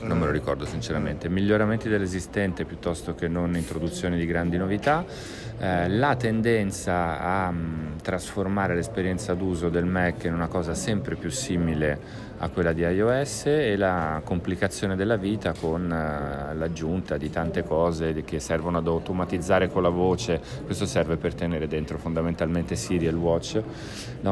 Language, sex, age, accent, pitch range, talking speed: Italian, male, 40-59, native, 80-100 Hz, 155 wpm